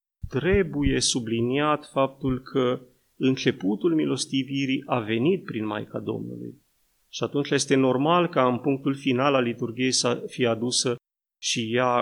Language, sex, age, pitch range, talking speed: Romanian, male, 30-49, 125-185 Hz, 130 wpm